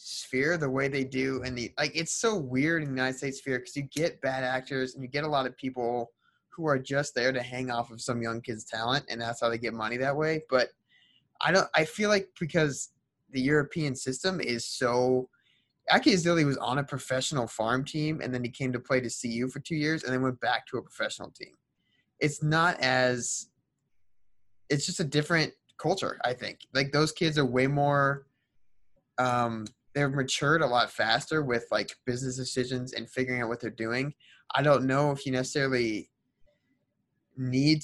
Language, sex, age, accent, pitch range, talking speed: English, male, 20-39, American, 120-150 Hz, 200 wpm